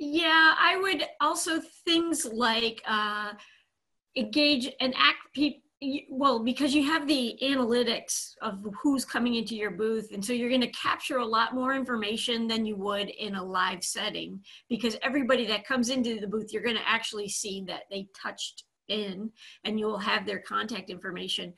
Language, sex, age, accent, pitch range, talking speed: English, female, 40-59, American, 215-270 Hz, 170 wpm